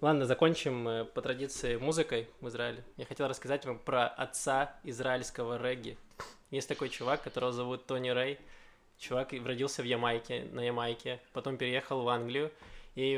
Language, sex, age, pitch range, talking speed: Russian, male, 20-39, 120-140 Hz, 150 wpm